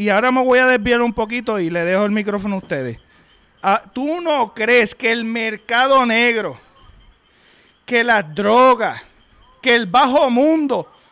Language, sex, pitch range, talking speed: Spanish, male, 195-270 Hz, 155 wpm